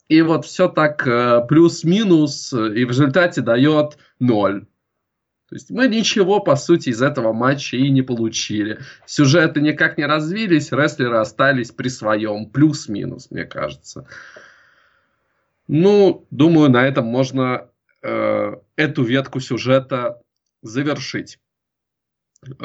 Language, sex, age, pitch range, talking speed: Russian, male, 20-39, 115-150 Hz, 115 wpm